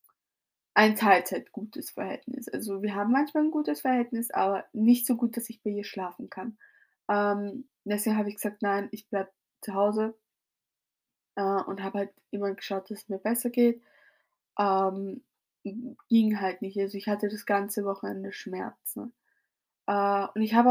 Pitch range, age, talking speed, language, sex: 195-230 Hz, 20-39, 160 wpm, German, female